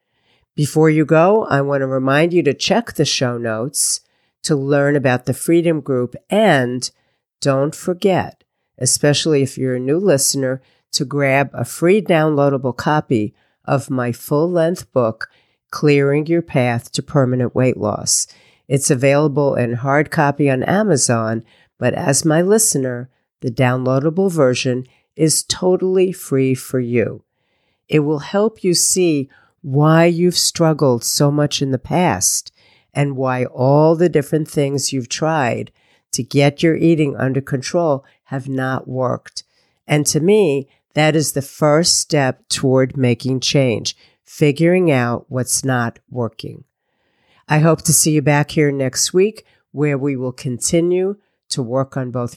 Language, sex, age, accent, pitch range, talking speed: English, female, 50-69, American, 130-160 Hz, 145 wpm